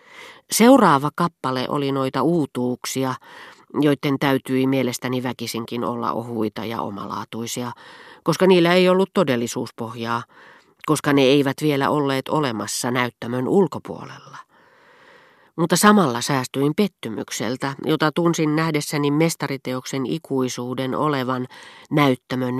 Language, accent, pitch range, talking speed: Finnish, native, 125-155 Hz, 100 wpm